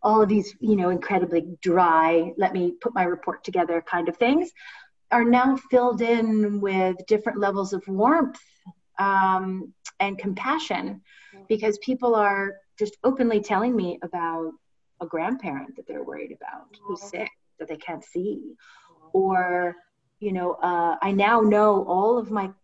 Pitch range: 180-225 Hz